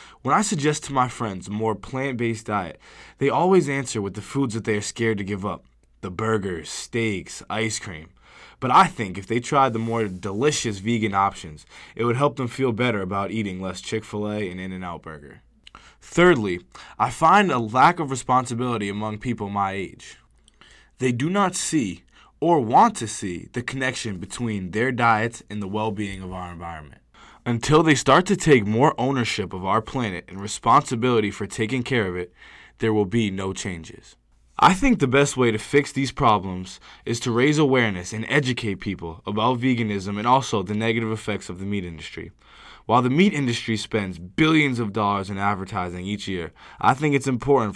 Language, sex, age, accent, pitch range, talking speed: English, male, 20-39, American, 100-125 Hz, 185 wpm